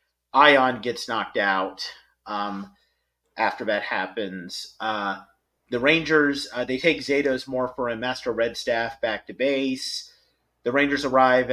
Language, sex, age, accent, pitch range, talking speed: English, male, 30-49, American, 110-135 Hz, 135 wpm